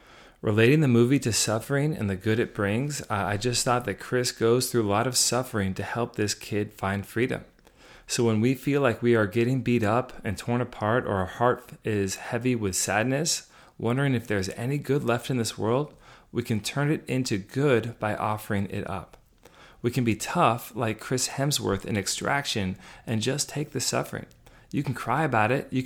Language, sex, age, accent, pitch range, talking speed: English, male, 30-49, American, 105-130 Hz, 200 wpm